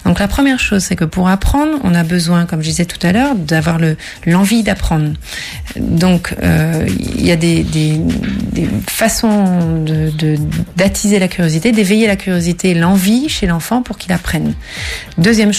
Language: French